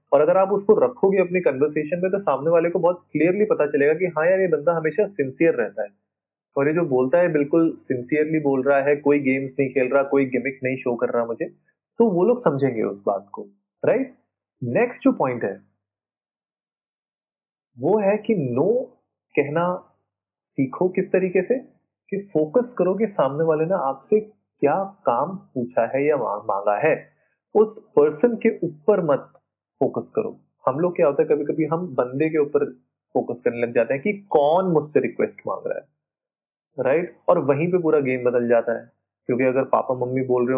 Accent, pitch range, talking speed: native, 130-195 Hz, 190 wpm